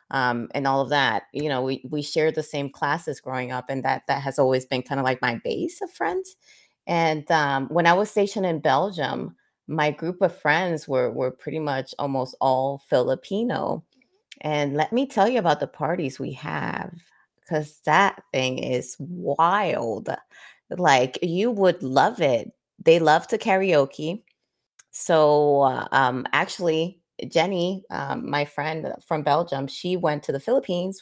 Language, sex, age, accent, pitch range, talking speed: English, female, 30-49, American, 145-190 Hz, 165 wpm